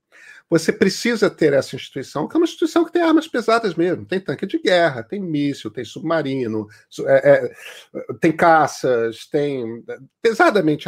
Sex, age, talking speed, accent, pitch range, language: male, 50-69, 145 wpm, Brazilian, 155-240 Hz, Portuguese